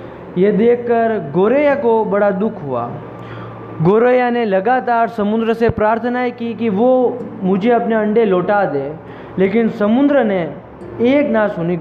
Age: 20-39